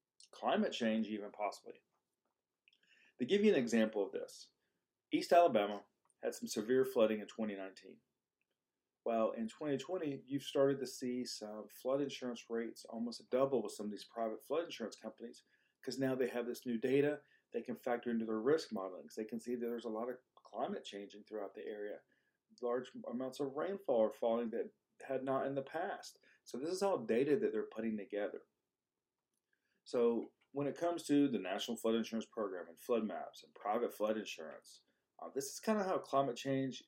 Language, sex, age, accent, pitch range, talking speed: English, male, 40-59, American, 110-145 Hz, 185 wpm